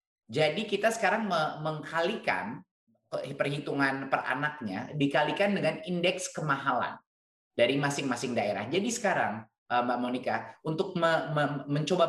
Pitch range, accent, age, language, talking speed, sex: 135-165 Hz, native, 20-39, Indonesian, 100 wpm, male